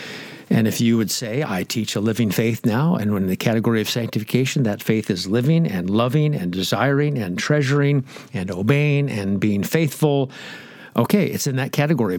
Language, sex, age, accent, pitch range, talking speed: English, male, 60-79, American, 110-140 Hz, 185 wpm